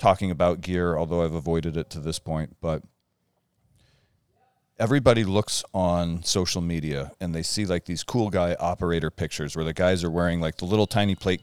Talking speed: 185 wpm